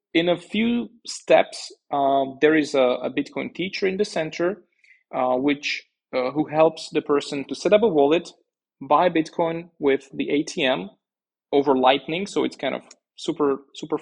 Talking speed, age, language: 165 wpm, 20-39, English